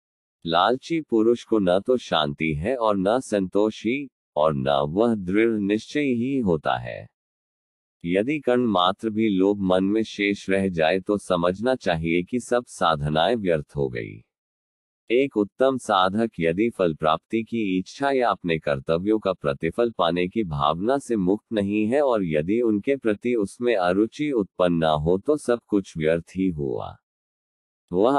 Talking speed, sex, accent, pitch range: 155 wpm, male, native, 85-115 Hz